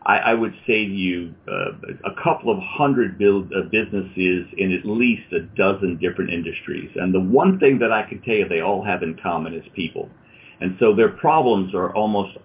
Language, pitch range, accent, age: English, 90-115 Hz, American, 50-69